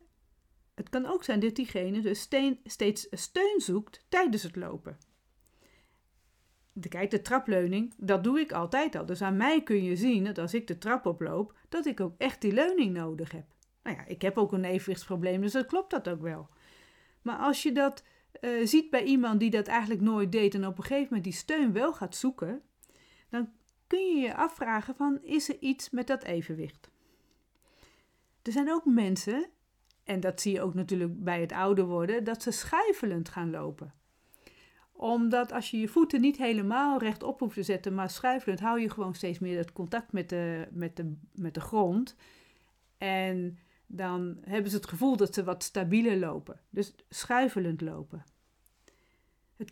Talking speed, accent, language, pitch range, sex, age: 180 wpm, Dutch, Dutch, 185-255 Hz, female, 40-59